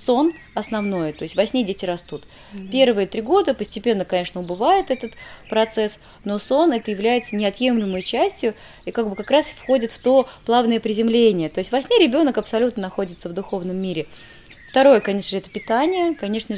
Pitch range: 185-235 Hz